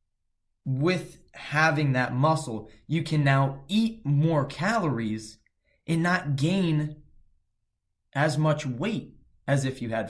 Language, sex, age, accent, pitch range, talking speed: English, male, 20-39, American, 115-155 Hz, 120 wpm